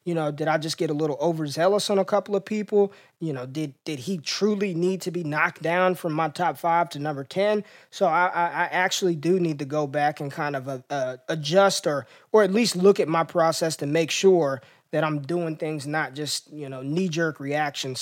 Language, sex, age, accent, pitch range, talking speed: English, male, 20-39, American, 145-180 Hz, 230 wpm